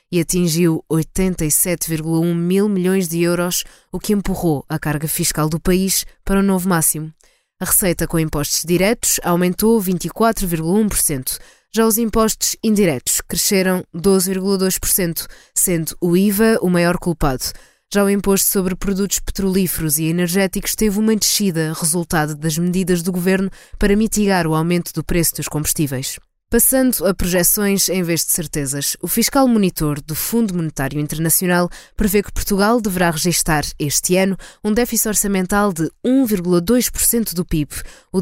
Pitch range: 165-200 Hz